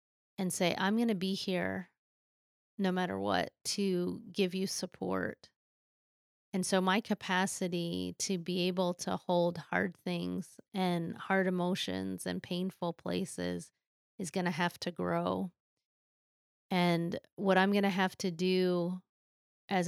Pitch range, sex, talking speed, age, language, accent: 160-185 Hz, female, 130 wpm, 30-49, English, American